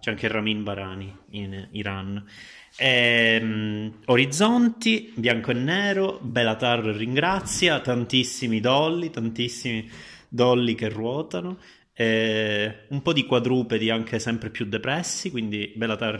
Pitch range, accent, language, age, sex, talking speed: 105-125 Hz, native, Italian, 30-49, male, 115 wpm